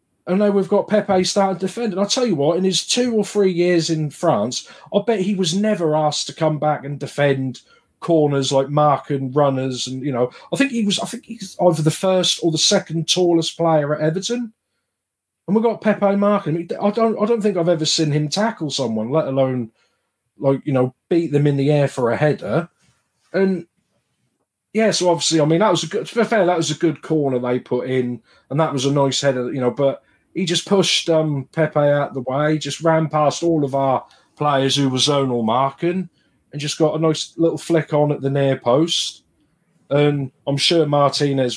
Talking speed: 220 wpm